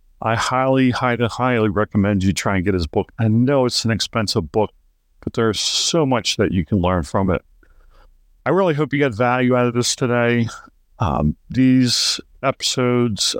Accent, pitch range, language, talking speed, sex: American, 105-130 Hz, English, 180 wpm, male